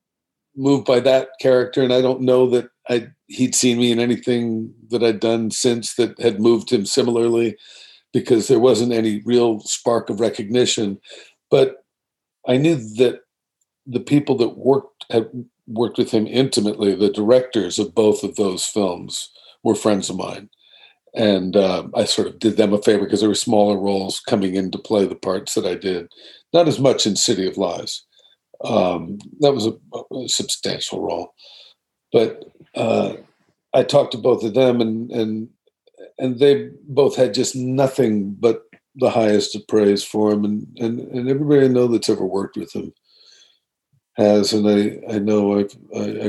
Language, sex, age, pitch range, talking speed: English, male, 50-69, 105-125 Hz, 170 wpm